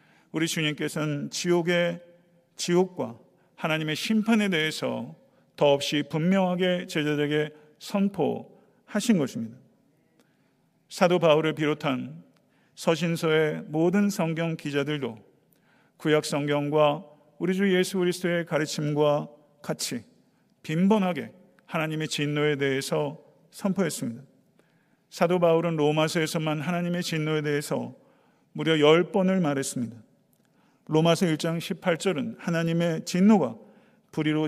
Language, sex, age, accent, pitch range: Korean, male, 50-69, native, 150-175 Hz